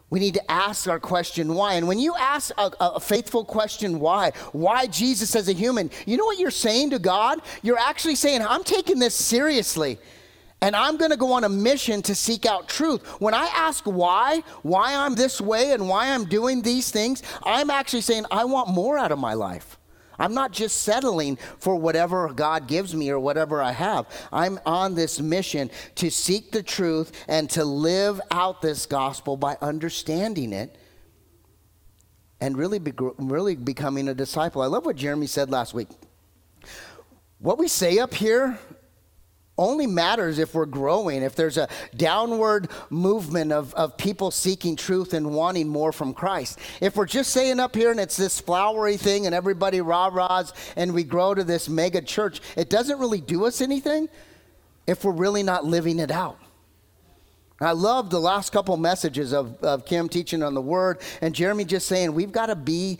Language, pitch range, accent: English, 150-220 Hz, American